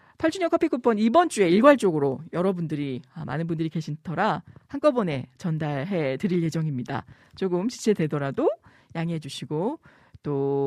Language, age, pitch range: Korean, 40-59, 155-230 Hz